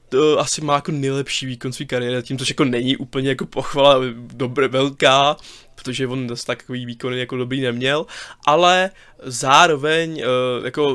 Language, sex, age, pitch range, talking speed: Czech, male, 20-39, 125-155 Hz, 155 wpm